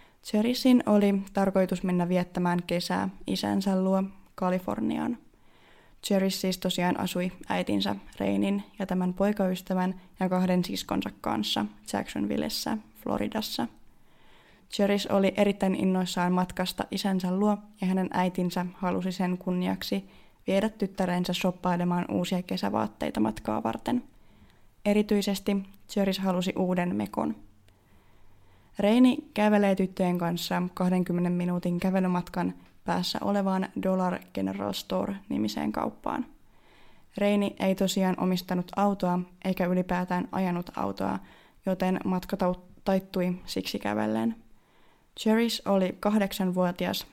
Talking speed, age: 100 wpm, 20-39